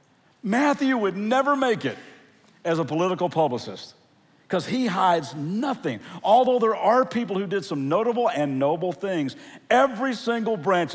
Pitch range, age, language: 180-245 Hz, 50-69, English